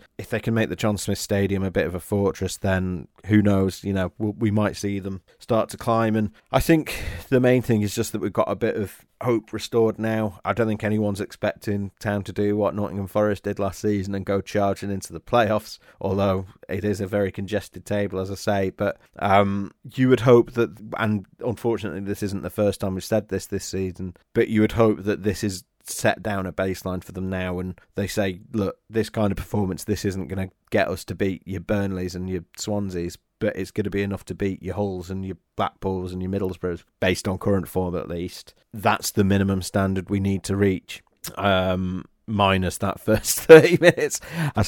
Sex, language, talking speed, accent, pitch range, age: male, English, 220 wpm, British, 95-105 Hz, 30-49